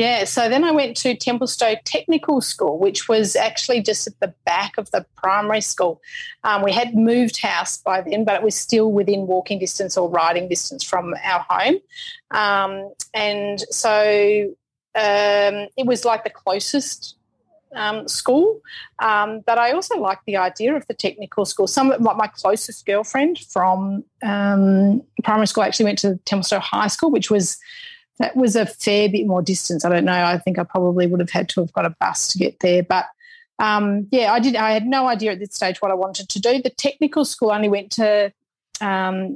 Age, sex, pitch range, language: 30-49, female, 190-235 Hz, English